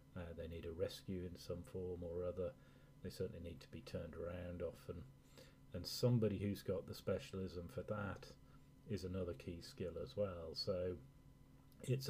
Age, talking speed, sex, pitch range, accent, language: 30-49, 170 wpm, male, 85-100 Hz, British, English